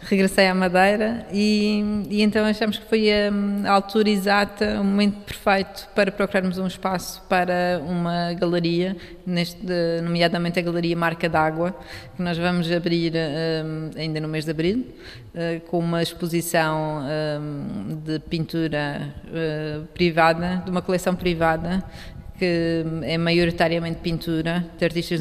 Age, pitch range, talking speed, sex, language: 20-39, 170-195 Hz, 125 wpm, female, Portuguese